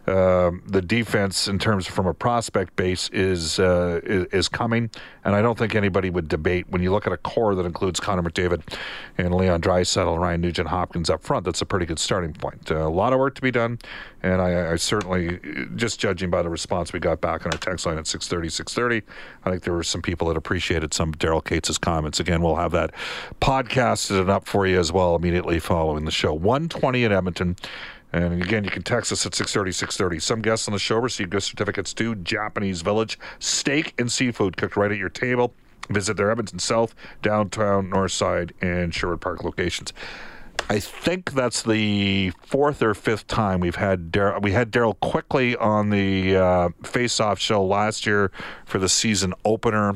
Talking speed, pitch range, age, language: 210 wpm, 90-105 Hz, 40-59, English